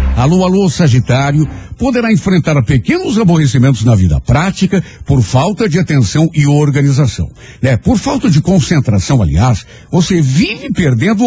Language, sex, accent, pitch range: Portuguese, male, Brazilian, 120-185 Hz